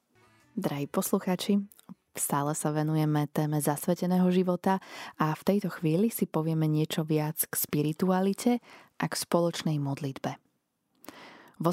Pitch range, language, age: 150-190 Hz, Slovak, 20-39